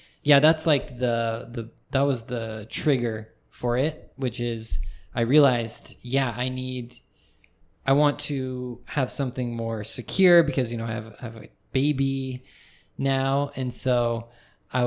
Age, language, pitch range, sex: 20-39, Japanese, 115-130 Hz, male